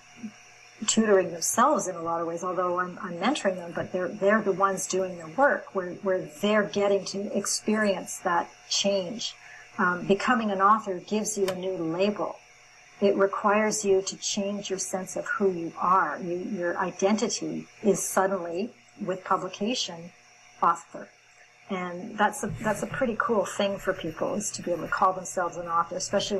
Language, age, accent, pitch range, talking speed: English, 50-69, American, 180-205 Hz, 175 wpm